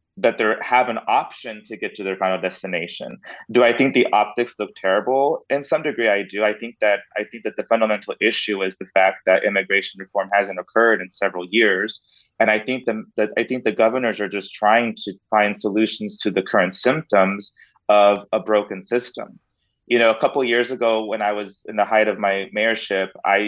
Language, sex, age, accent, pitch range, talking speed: English, male, 30-49, American, 95-110 Hz, 210 wpm